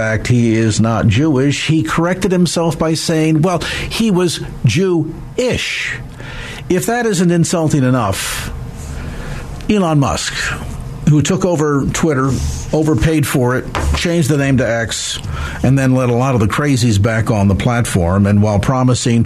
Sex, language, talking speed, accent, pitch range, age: male, English, 150 wpm, American, 110-155 Hz, 50-69